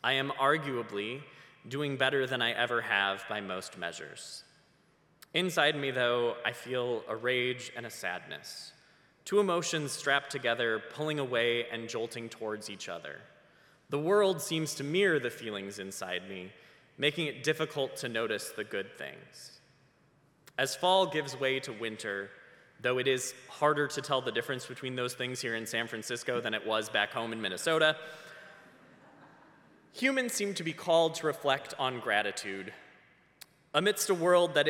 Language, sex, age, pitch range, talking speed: English, male, 20-39, 115-160 Hz, 155 wpm